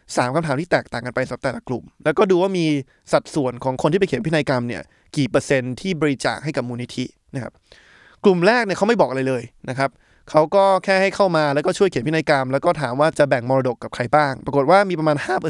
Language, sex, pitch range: Thai, male, 130-175 Hz